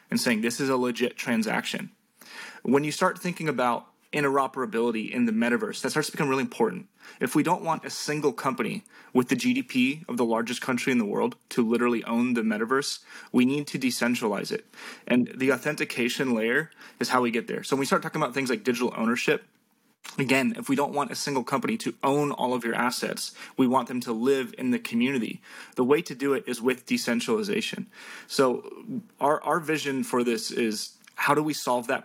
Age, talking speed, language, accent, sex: 20-39, 205 wpm, English, American, male